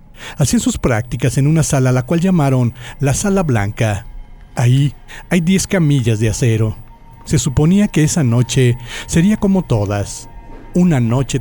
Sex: male